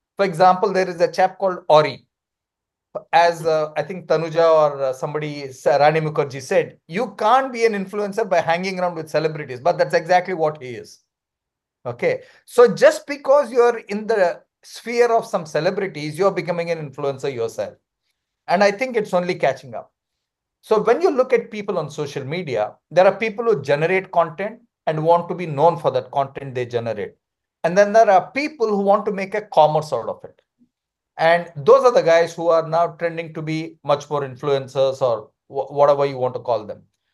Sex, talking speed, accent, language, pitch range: male, 190 wpm, Indian, English, 150-215 Hz